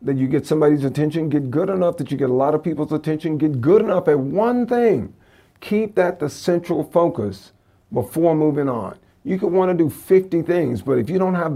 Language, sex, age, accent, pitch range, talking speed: English, male, 50-69, American, 125-175 Hz, 220 wpm